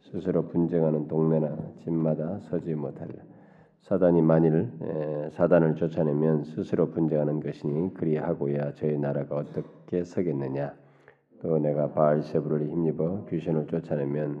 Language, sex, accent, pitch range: Korean, male, native, 75-85 Hz